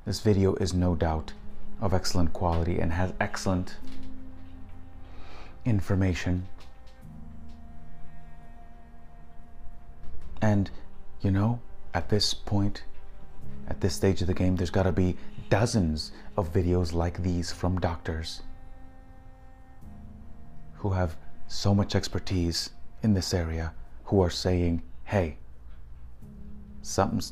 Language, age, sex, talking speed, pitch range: English, 30-49, male, 105 wpm, 70-90 Hz